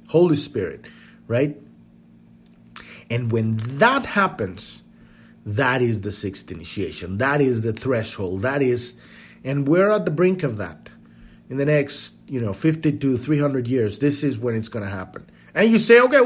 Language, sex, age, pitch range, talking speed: English, male, 30-49, 115-170 Hz, 165 wpm